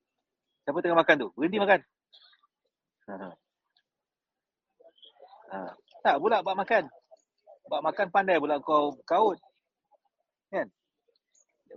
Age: 30-49